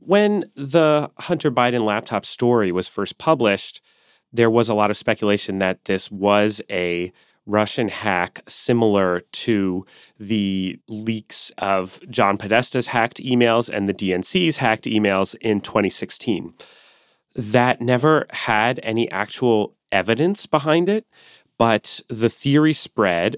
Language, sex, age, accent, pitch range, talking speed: English, male, 30-49, American, 95-120 Hz, 125 wpm